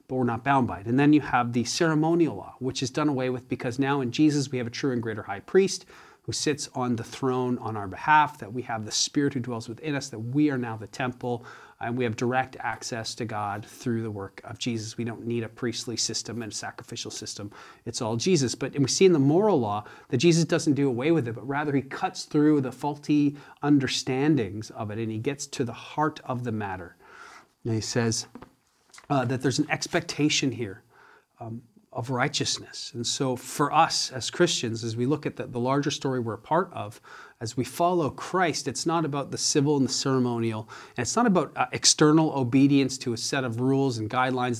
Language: English